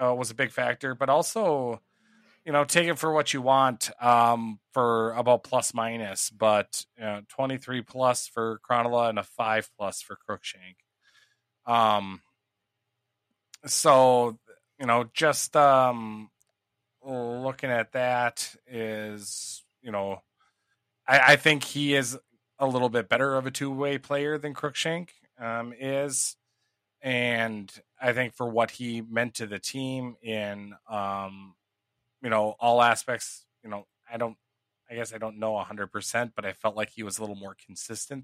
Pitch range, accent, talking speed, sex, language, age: 110-135 Hz, American, 155 wpm, male, English, 20-39